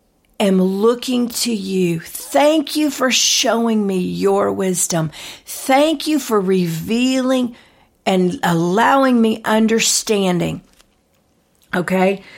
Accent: American